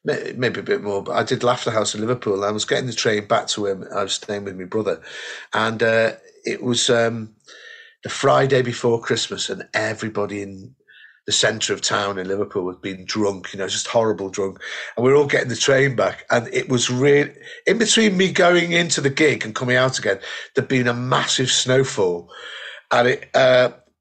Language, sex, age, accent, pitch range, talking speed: English, male, 50-69, British, 105-145 Hz, 205 wpm